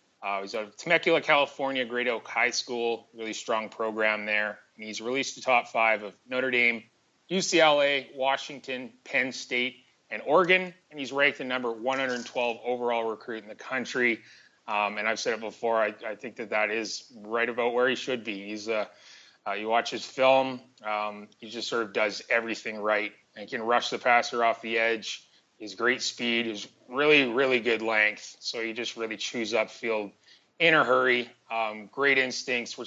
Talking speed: 190 wpm